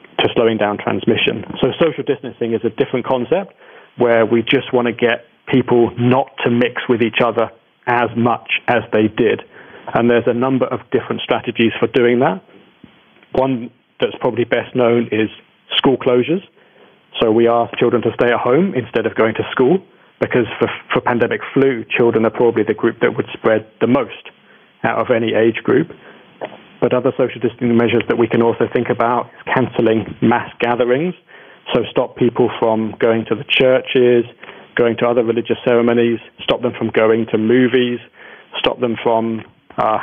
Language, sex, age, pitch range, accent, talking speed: English, male, 30-49, 115-125 Hz, British, 175 wpm